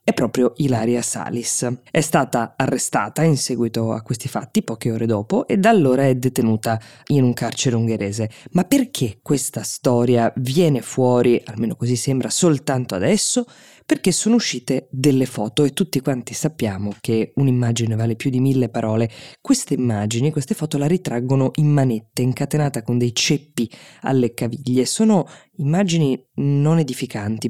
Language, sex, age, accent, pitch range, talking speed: Italian, female, 20-39, native, 120-145 Hz, 150 wpm